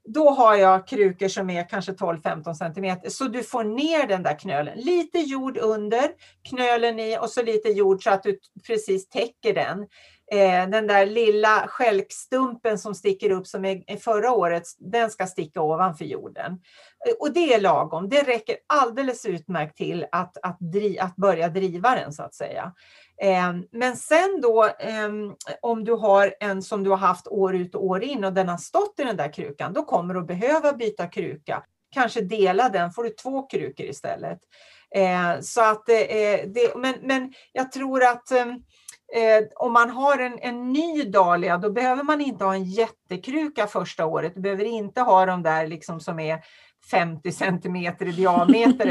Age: 40-59